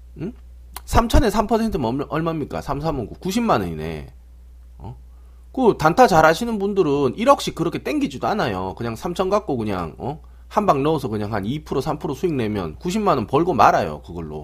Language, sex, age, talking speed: English, male, 40-59, 150 wpm